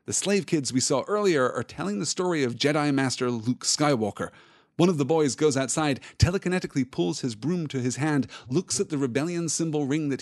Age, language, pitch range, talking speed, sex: 30-49, English, 125-175 Hz, 205 wpm, male